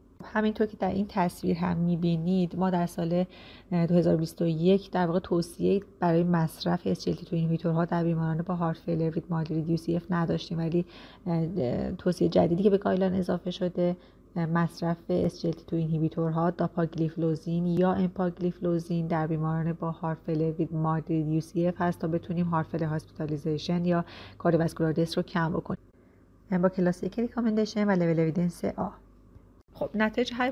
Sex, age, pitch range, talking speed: female, 30-49, 165-185 Hz, 135 wpm